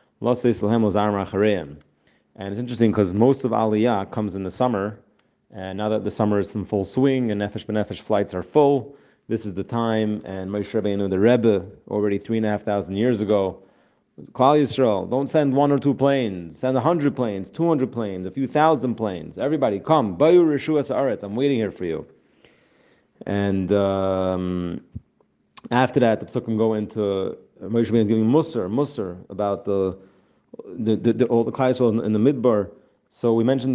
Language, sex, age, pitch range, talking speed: English, male, 30-49, 100-125 Hz, 165 wpm